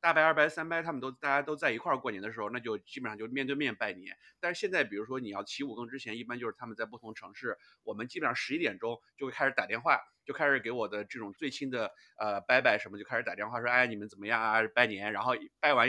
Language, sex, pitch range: Chinese, male, 115-165 Hz